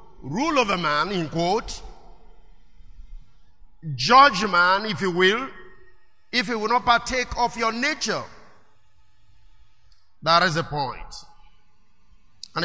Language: English